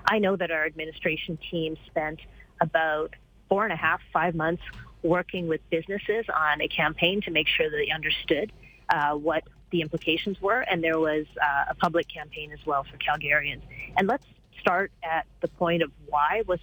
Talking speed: 185 wpm